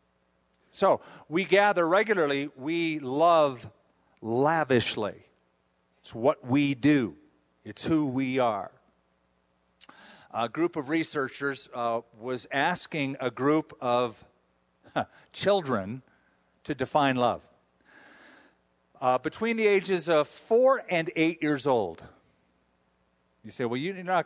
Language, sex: English, male